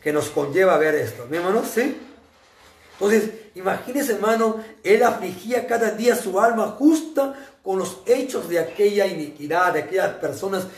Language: Spanish